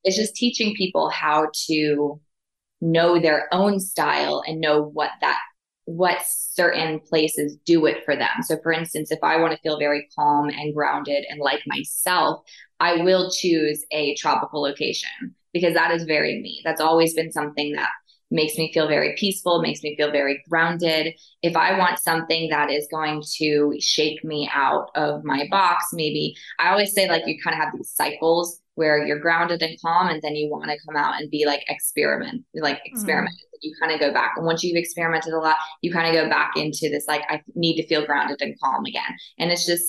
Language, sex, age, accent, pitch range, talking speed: English, female, 20-39, American, 150-170 Hz, 200 wpm